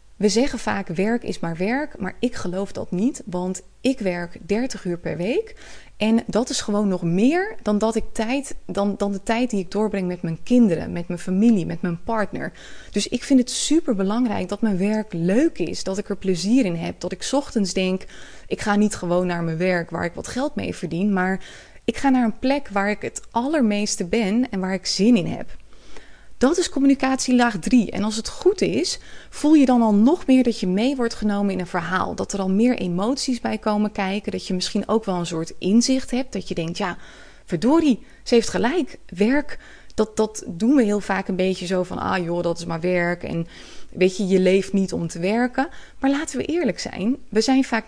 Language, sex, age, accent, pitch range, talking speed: Dutch, female, 20-39, Dutch, 190-245 Hz, 220 wpm